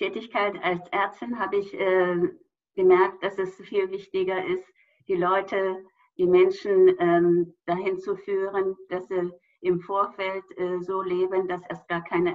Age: 50-69